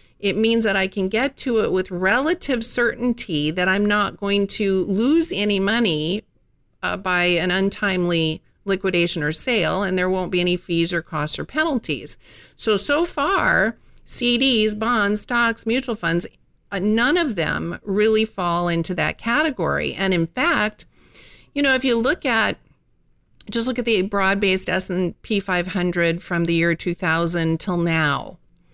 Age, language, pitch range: 50-69, English, 180-230 Hz